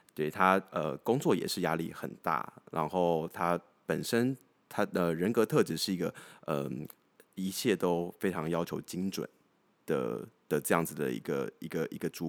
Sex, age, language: male, 20-39, Chinese